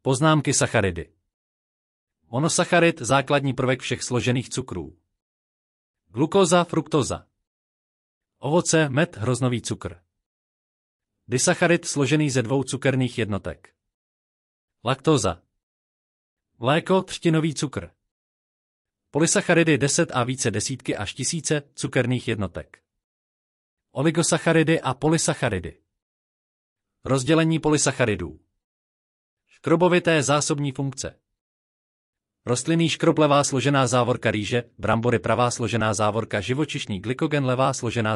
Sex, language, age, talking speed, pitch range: male, Czech, 40-59, 85 wpm, 100-150 Hz